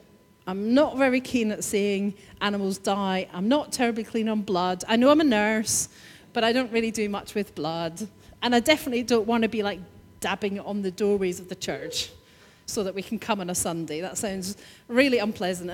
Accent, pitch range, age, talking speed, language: British, 195-255 Hz, 40-59, 205 wpm, English